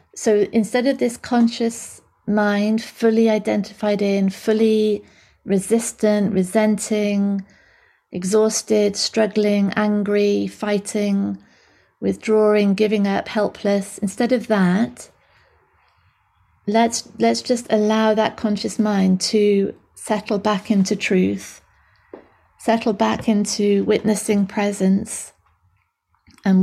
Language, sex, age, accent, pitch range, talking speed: English, female, 30-49, British, 185-215 Hz, 90 wpm